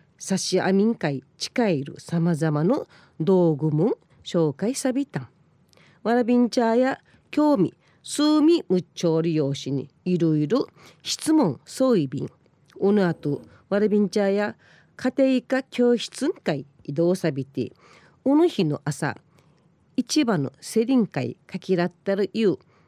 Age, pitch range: 40-59, 155-230 Hz